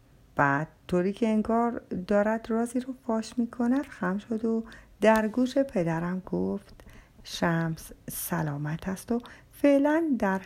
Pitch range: 170-235 Hz